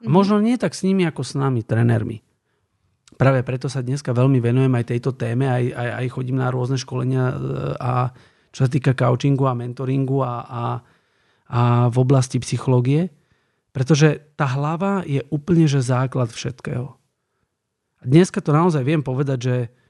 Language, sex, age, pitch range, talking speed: Slovak, male, 40-59, 125-160 Hz, 165 wpm